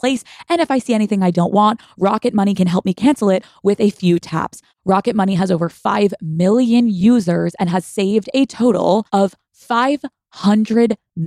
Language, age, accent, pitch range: English, 20-39, American, 175-225 Hz